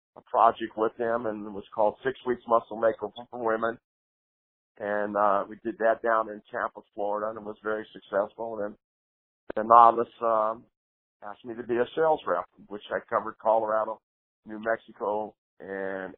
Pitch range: 105-120 Hz